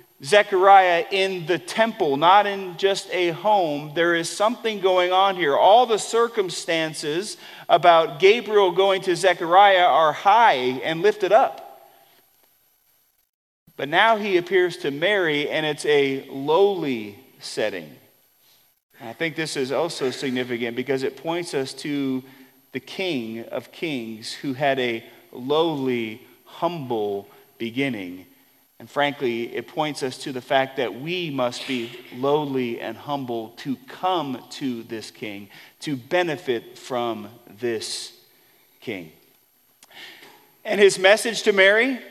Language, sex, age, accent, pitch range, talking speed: English, male, 40-59, American, 135-210 Hz, 130 wpm